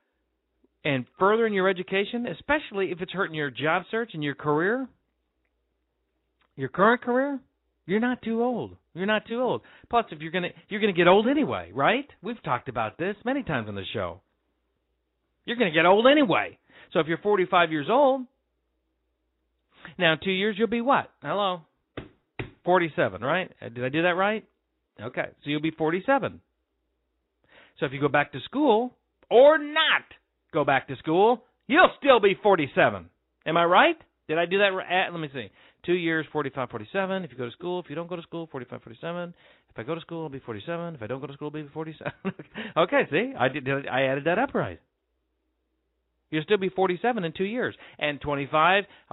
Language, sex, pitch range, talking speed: English, male, 130-205 Hz, 195 wpm